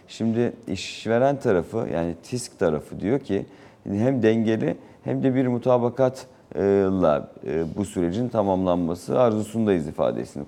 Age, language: 40-59, Turkish